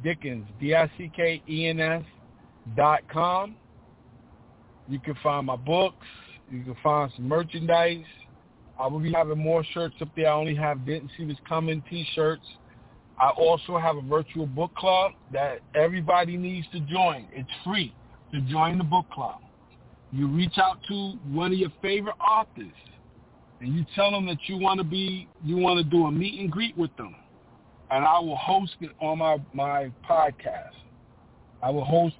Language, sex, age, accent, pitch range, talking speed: English, male, 50-69, American, 150-185 Hz, 160 wpm